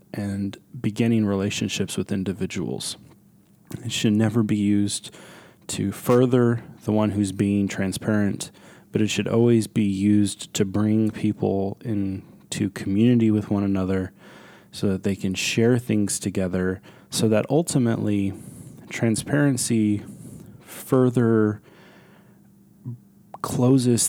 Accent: American